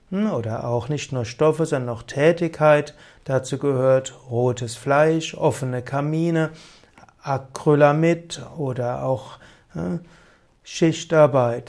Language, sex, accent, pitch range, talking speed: German, male, German, 140-175 Hz, 90 wpm